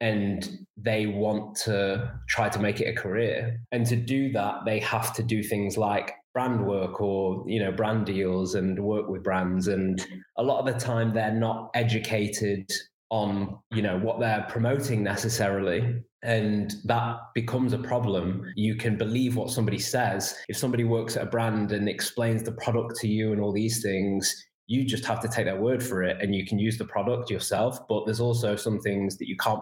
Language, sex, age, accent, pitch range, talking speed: English, male, 20-39, British, 100-115 Hz, 200 wpm